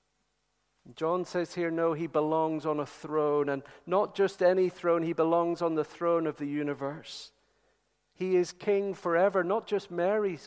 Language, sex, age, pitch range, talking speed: English, male, 50-69, 145-180 Hz, 165 wpm